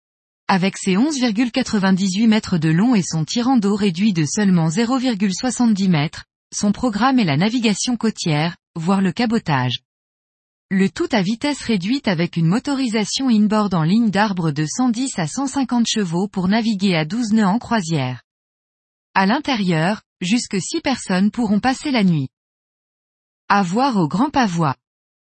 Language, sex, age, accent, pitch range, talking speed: French, female, 20-39, French, 180-245 Hz, 145 wpm